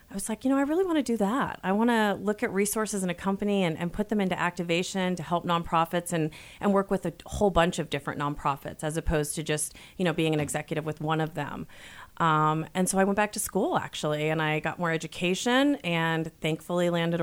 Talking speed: 240 wpm